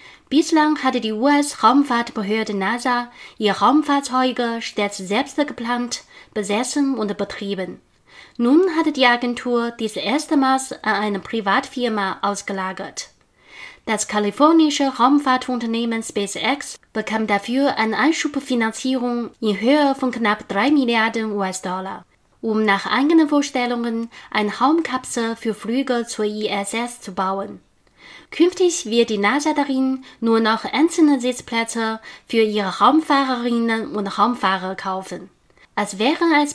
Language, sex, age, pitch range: Chinese, female, 20-39, 210-265 Hz